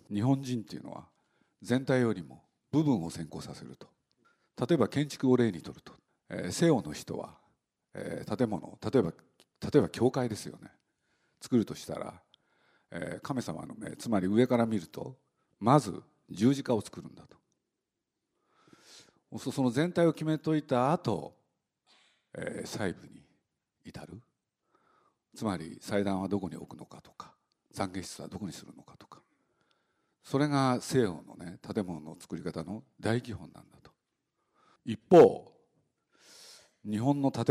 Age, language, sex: 50-69, Japanese, male